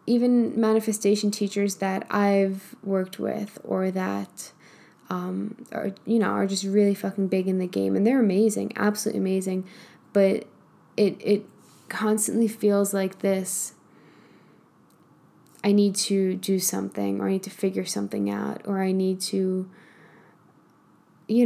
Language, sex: English, female